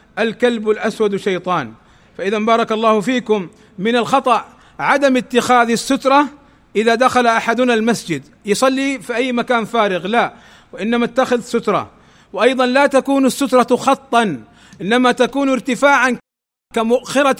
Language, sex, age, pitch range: Arabic, male, 40-59, 215-245 Hz